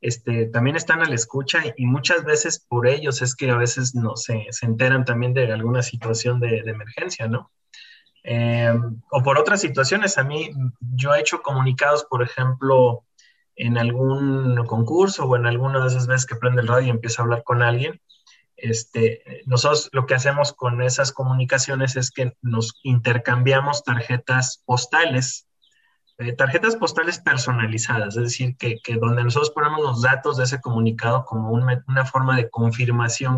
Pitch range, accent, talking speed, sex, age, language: 120-140 Hz, Mexican, 165 wpm, male, 30-49, Spanish